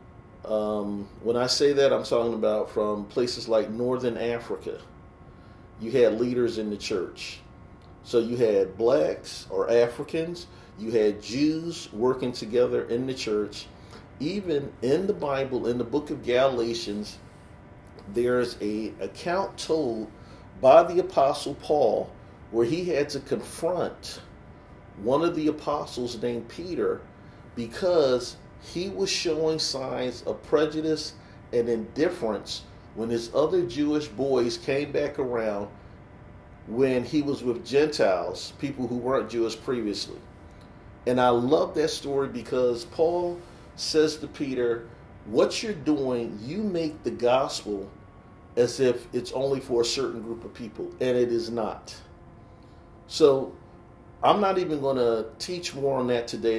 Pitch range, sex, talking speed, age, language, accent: 110-145 Hz, male, 140 wpm, 40-59, English, American